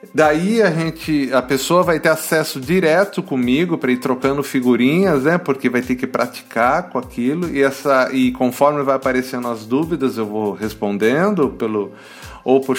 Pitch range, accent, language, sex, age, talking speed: 130-175 Hz, Brazilian, Portuguese, male, 40-59, 170 wpm